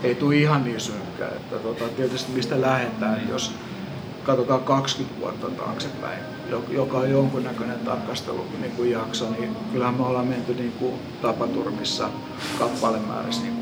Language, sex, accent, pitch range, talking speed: Finnish, male, native, 120-135 Hz, 140 wpm